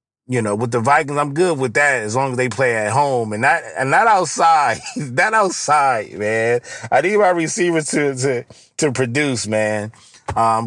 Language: English